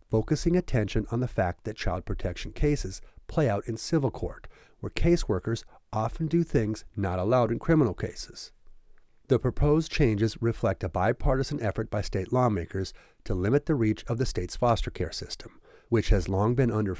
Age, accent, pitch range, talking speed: 40-59, American, 95-130 Hz, 175 wpm